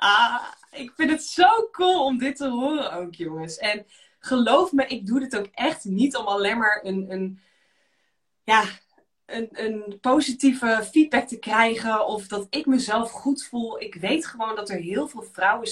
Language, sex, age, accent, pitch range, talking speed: Dutch, female, 20-39, Dutch, 185-250 Hz, 170 wpm